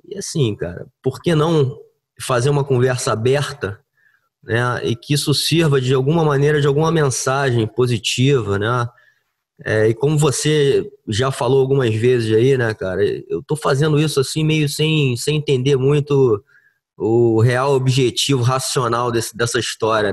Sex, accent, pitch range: male, Brazilian, 125-150 Hz